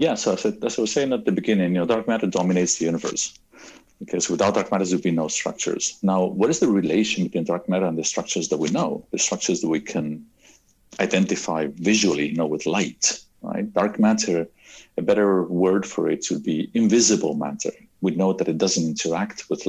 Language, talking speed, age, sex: English, 210 wpm, 50-69, male